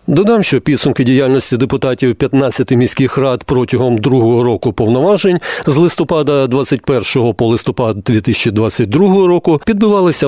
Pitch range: 120-155 Hz